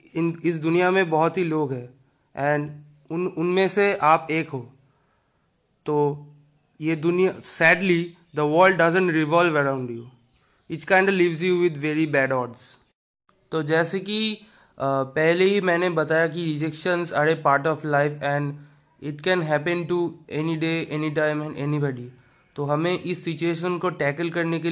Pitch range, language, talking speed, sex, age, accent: 145-175 Hz, Hindi, 160 wpm, male, 20-39, native